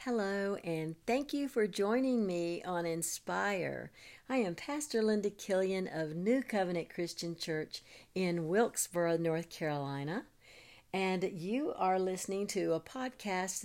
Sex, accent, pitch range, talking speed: female, American, 150-195 Hz, 130 wpm